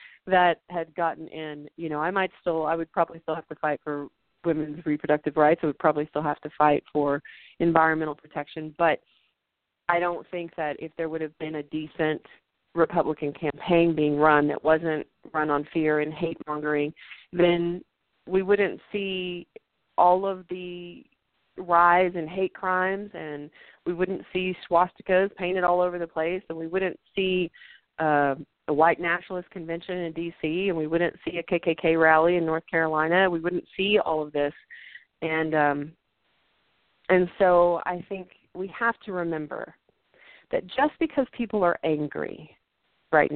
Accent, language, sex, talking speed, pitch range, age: American, English, female, 165 wpm, 155-180 Hz, 30-49